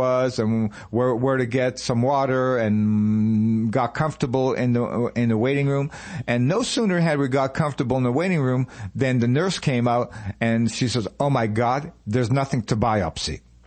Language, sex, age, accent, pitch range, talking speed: English, male, 50-69, American, 120-150 Hz, 185 wpm